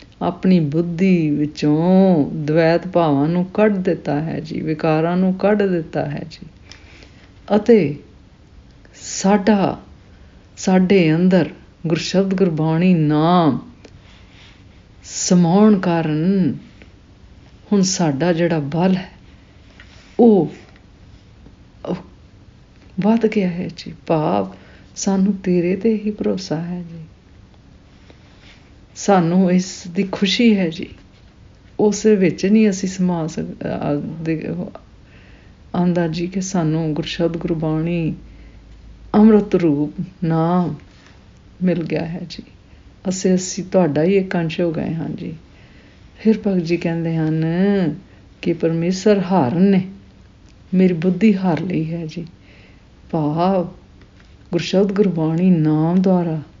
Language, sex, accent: English, female, Indian